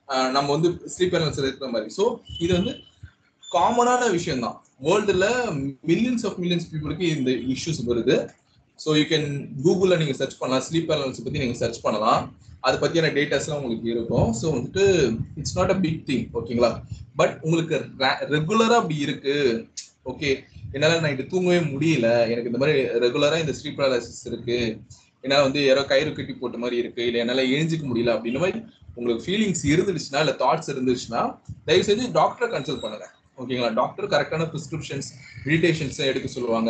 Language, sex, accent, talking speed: Tamil, male, native, 110 wpm